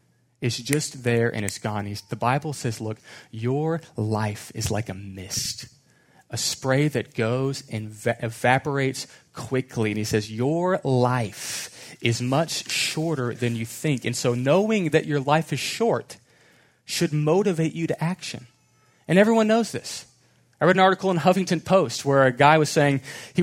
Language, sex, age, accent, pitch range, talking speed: English, male, 30-49, American, 120-155 Hz, 165 wpm